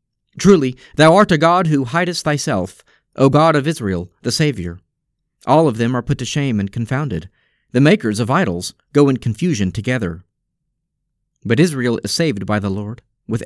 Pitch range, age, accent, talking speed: 110-150 Hz, 40-59, American, 175 wpm